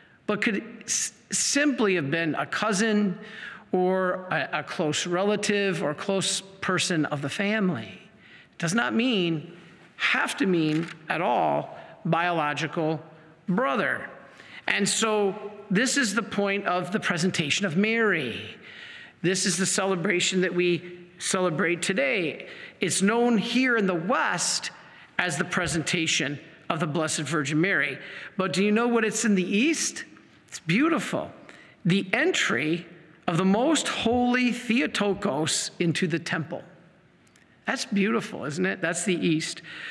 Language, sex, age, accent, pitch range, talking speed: English, male, 50-69, American, 170-215 Hz, 135 wpm